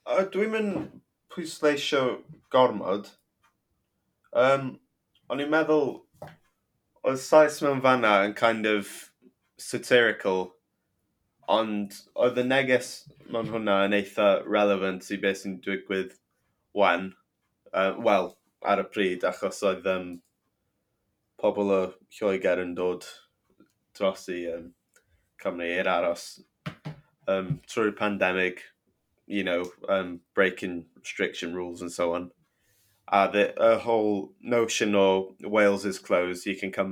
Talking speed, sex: 100 wpm, male